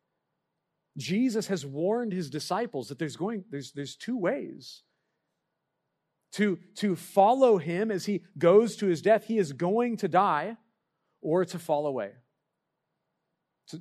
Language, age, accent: English, 40-59, American